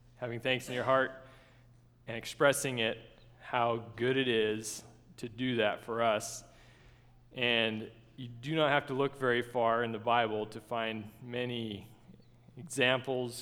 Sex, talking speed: male, 150 wpm